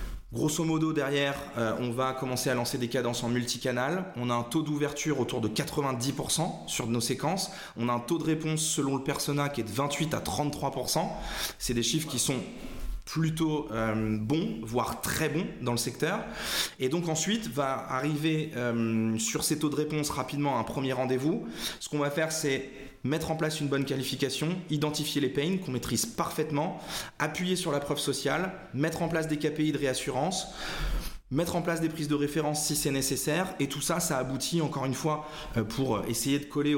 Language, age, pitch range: French, 20-39, 125-160 Hz